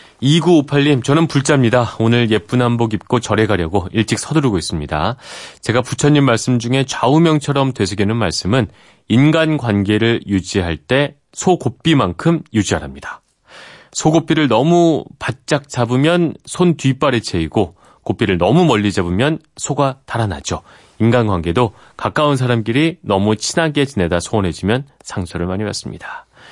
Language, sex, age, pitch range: Korean, male, 30-49, 95-140 Hz